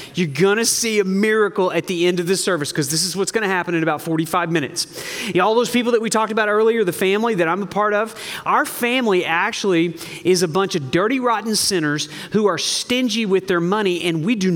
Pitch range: 165-210 Hz